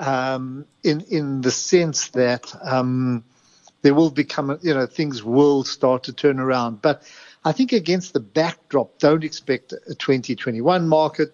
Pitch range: 125-150 Hz